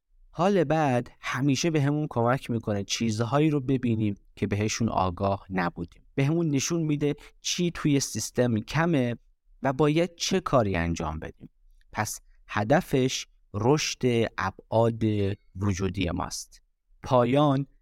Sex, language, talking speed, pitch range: male, Persian, 120 wpm, 95-140 Hz